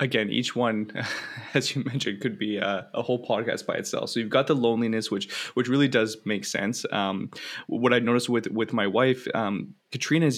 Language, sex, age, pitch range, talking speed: English, male, 20-39, 110-135 Hz, 200 wpm